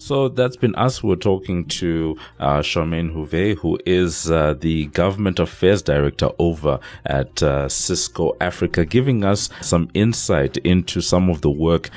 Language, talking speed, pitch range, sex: English, 155 wpm, 75-85 Hz, male